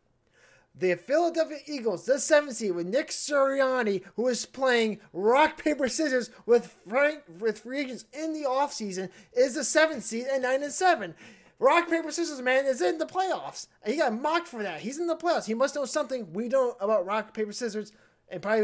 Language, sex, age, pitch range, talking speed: English, male, 20-39, 185-255 Hz, 195 wpm